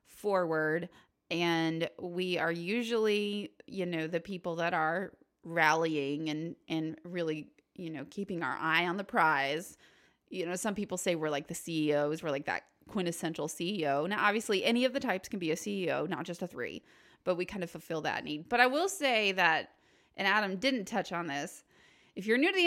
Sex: female